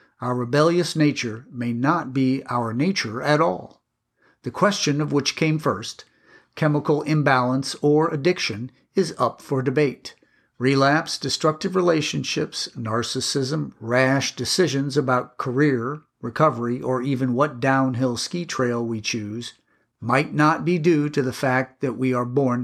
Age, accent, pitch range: 50-69, American, 120-150 Hz